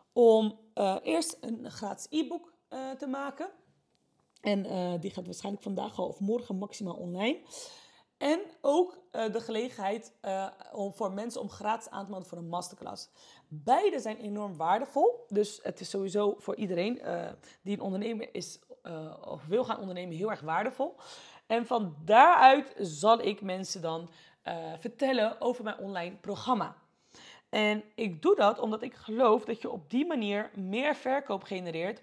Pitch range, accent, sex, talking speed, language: 195-255 Hz, Dutch, female, 165 wpm, Dutch